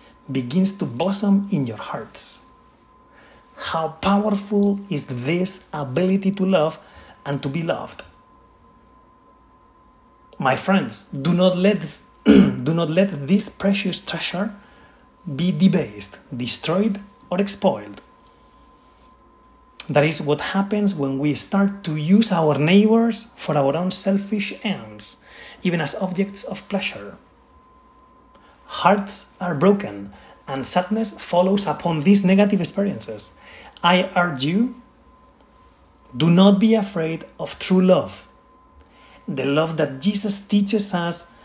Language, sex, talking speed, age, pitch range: English, male, 115 wpm, 30-49, 155-205 Hz